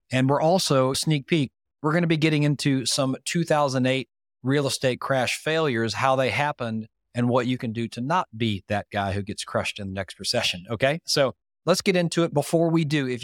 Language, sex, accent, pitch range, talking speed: English, male, American, 120-145 Hz, 215 wpm